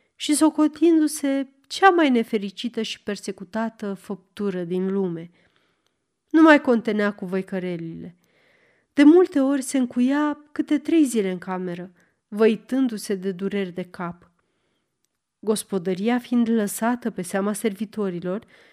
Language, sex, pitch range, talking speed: Romanian, female, 195-265 Hz, 115 wpm